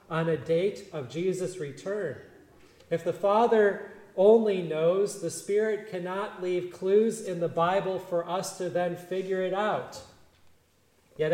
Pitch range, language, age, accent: 160-200 Hz, English, 30-49, American